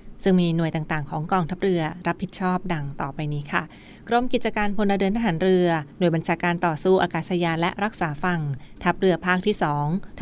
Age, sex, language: 20-39, female, Thai